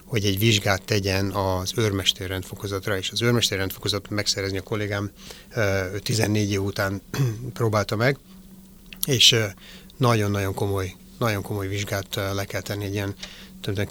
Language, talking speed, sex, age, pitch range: Hungarian, 120 wpm, male, 30-49, 100-120 Hz